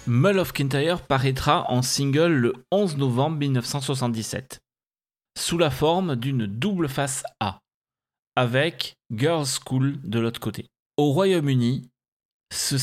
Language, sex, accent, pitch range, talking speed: French, male, French, 120-145 Hz, 120 wpm